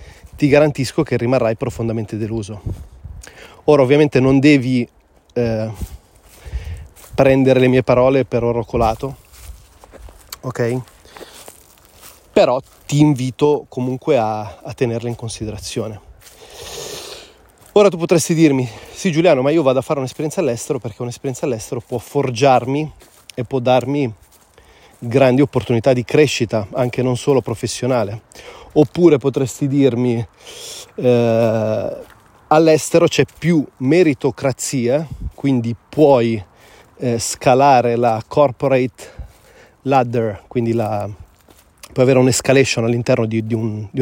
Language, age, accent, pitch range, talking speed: Italian, 30-49, native, 110-135 Hz, 110 wpm